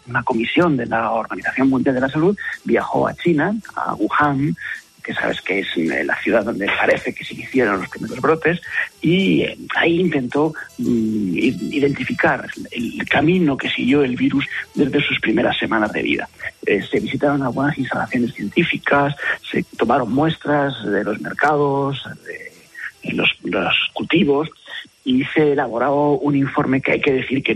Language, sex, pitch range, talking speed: Spanish, male, 125-155 Hz, 150 wpm